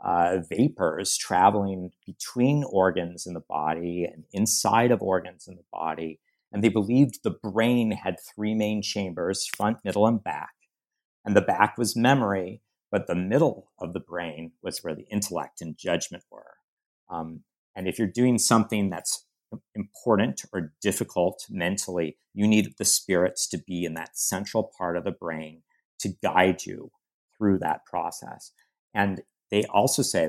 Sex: male